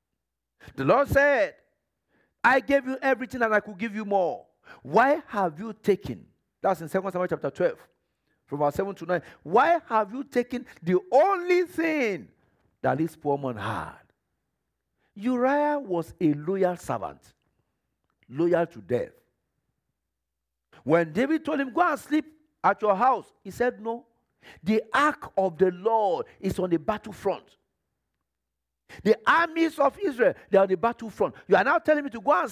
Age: 50-69